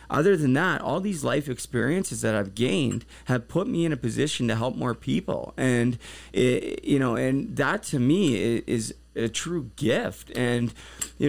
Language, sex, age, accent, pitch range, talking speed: English, male, 30-49, American, 115-145 Hz, 175 wpm